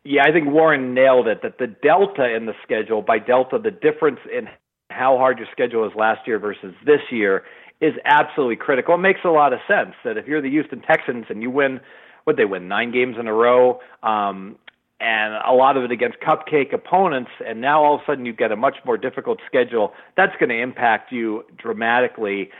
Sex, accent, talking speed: male, American, 215 wpm